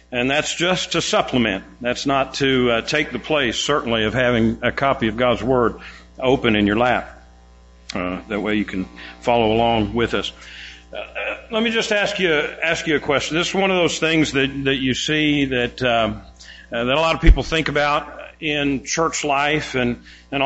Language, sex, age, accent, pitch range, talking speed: English, male, 50-69, American, 115-165 Hz, 200 wpm